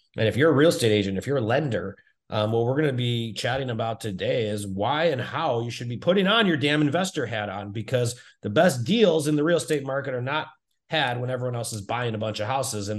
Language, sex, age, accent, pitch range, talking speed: English, male, 30-49, American, 100-135 Hz, 260 wpm